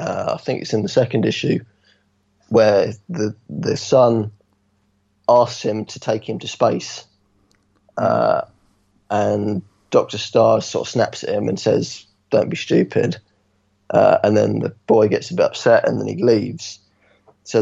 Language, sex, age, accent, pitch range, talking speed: English, male, 20-39, British, 100-115 Hz, 160 wpm